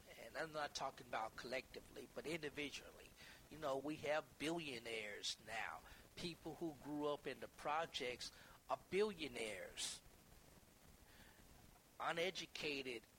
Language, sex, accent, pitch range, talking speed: English, male, American, 135-160 Hz, 105 wpm